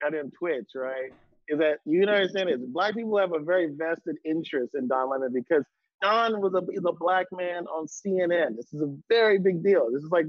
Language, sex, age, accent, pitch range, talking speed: English, male, 30-49, American, 155-200 Hz, 235 wpm